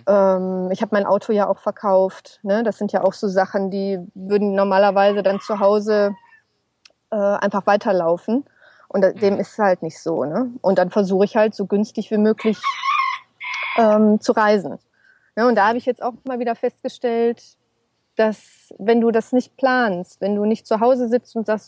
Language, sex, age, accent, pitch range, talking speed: German, female, 30-49, German, 200-240 Hz, 170 wpm